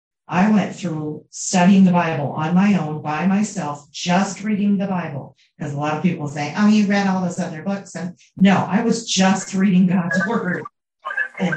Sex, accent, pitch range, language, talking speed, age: female, American, 160-195 Hz, English, 200 wpm, 40-59